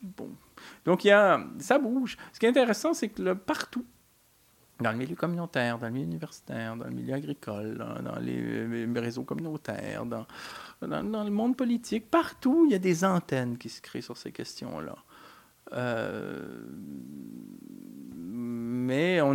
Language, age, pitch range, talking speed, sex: French, 40-59, 120-195 Hz, 160 wpm, male